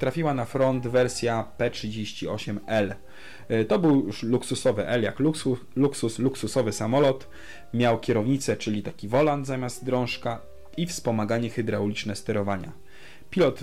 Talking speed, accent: 120 wpm, Polish